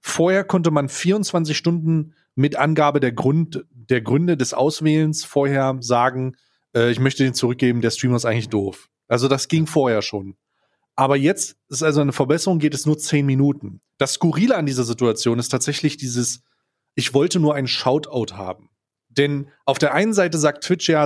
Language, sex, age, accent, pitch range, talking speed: German, male, 30-49, German, 125-155 Hz, 180 wpm